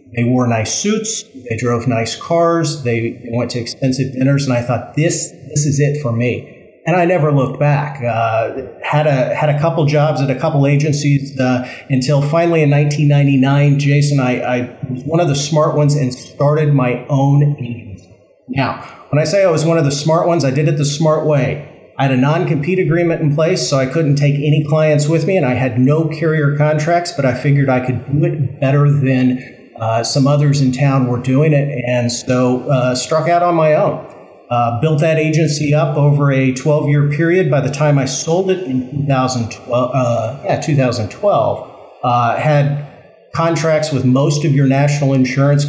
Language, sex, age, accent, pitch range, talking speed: English, male, 40-59, American, 130-155 Hz, 195 wpm